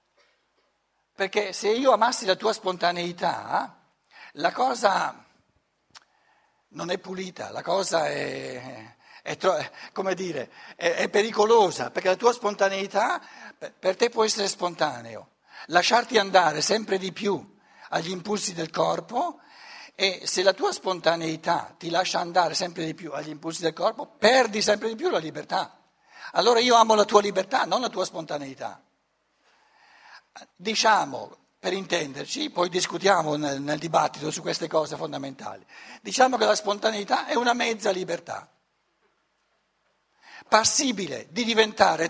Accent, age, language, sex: native, 60-79, Italian, male